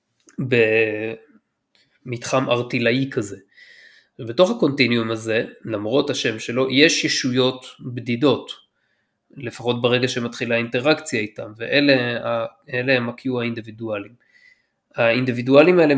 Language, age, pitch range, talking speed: Hebrew, 20-39, 115-135 Hz, 85 wpm